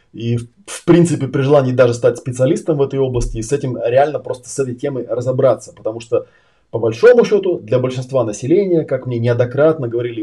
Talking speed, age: 190 wpm, 20-39